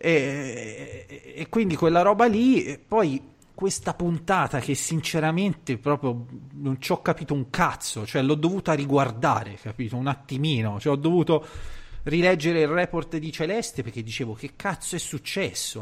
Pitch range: 115-145 Hz